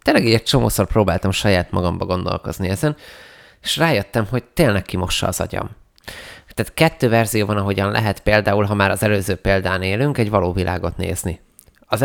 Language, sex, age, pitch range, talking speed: Hungarian, male, 20-39, 95-115 Hz, 170 wpm